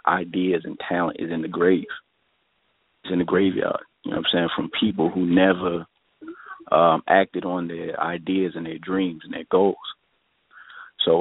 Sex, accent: male, American